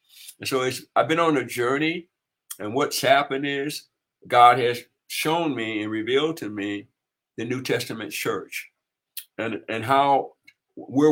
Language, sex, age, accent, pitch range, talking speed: English, male, 60-79, American, 125-160 Hz, 150 wpm